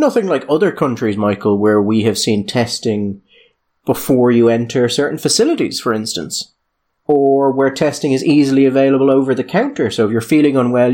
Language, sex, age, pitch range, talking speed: English, male, 30-49, 110-155 Hz, 170 wpm